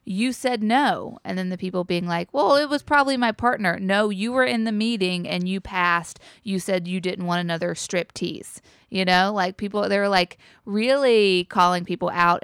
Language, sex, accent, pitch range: English, female, American, 180-230 Hz